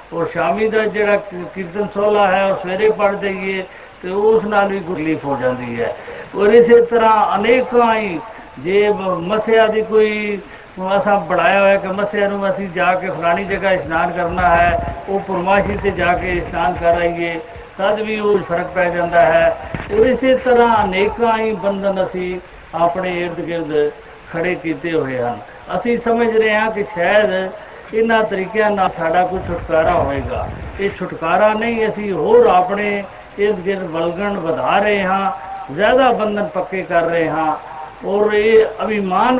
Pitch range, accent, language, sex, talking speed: 175-215 Hz, native, Hindi, male, 145 wpm